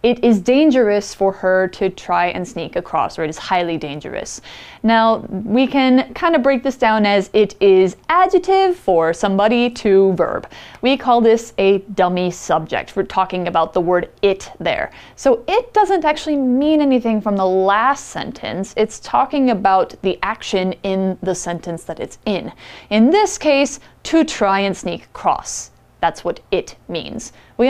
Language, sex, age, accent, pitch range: Chinese, female, 30-49, American, 190-275 Hz